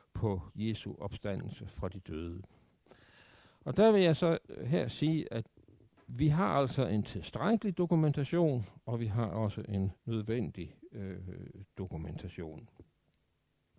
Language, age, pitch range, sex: Danish, 60-79, 100-145 Hz, male